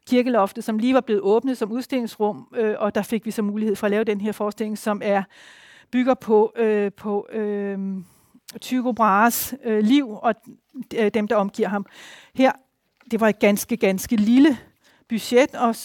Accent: Danish